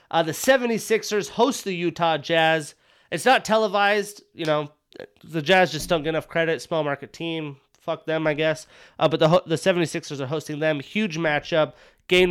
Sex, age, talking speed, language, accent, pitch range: male, 30-49, 180 wpm, English, American, 155-185 Hz